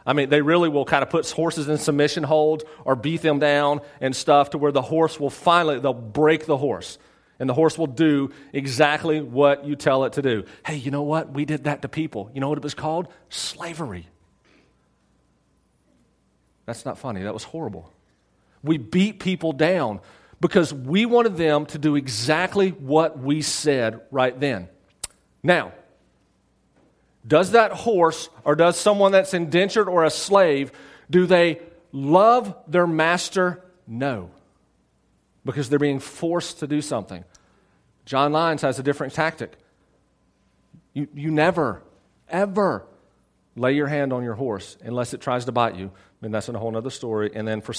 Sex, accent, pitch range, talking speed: male, American, 125-160 Hz, 170 wpm